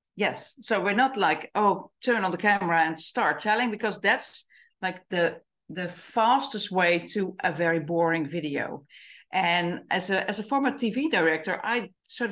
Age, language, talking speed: 50-69, English, 170 wpm